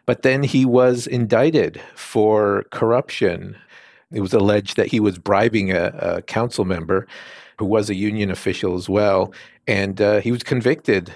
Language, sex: English, male